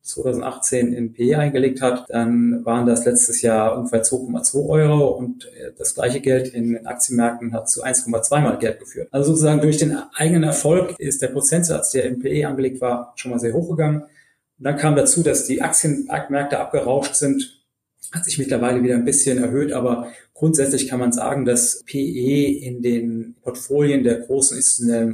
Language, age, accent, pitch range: German, 30-49, German, 120-145 Hz